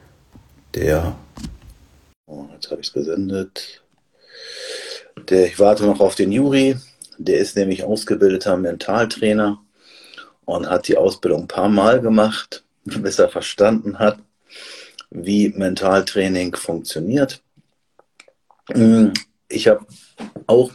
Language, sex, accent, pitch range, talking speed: German, male, German, 95-115 Hz, 105 wpm